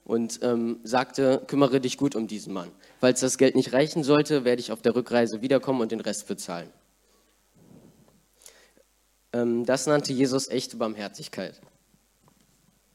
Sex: male